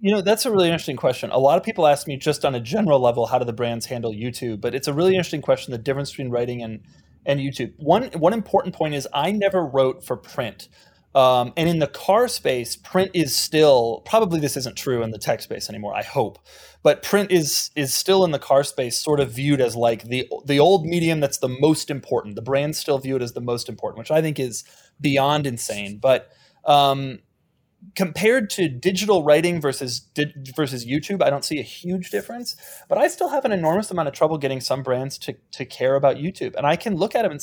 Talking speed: 230 wpm